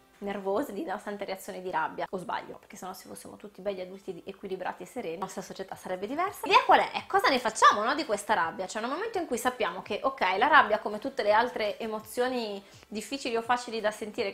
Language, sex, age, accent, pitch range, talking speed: Italian, female, 20-39, native, 200-245 Hz, 235 wpm